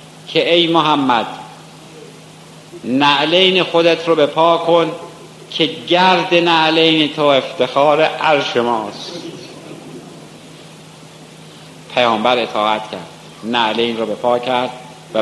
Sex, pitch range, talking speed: male, 135-180 Hz, 95 wpm